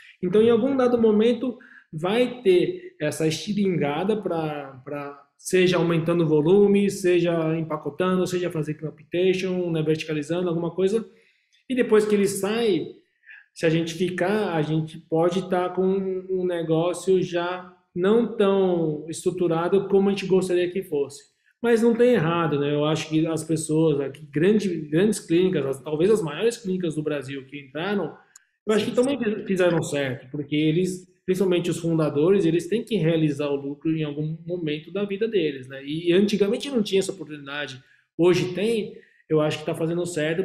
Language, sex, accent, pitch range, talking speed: Portuguese, male, Brazilian, 150-195 Hz, 165 wpm